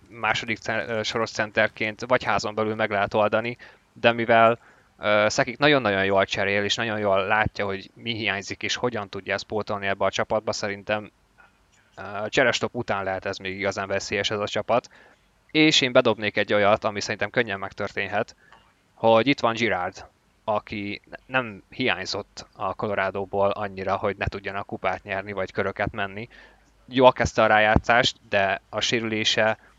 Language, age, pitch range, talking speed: Hungarian, 20-39, 95-110 Hz, 155 wpm